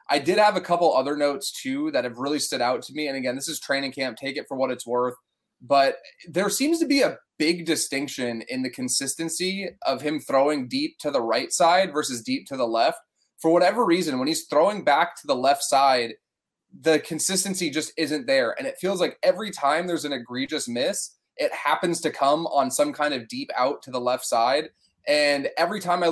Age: 20-39